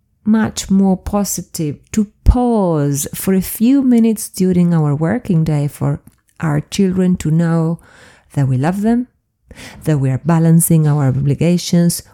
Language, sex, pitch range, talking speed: English, female, 150-215 Hz, 140 wpm